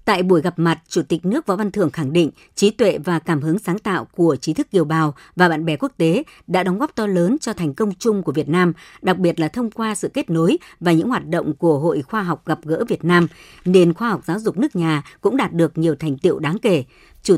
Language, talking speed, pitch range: Vietnamese, 265 wpm, 165-215 Hz